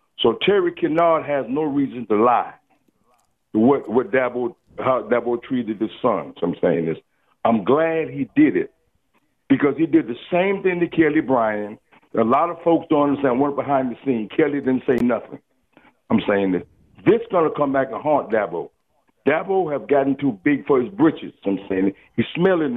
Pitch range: 135-185 Hz